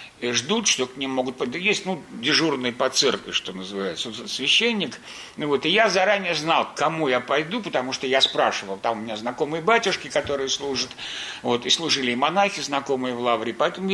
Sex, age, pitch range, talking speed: male, 60-79, 130-185 Hz, 195 wpm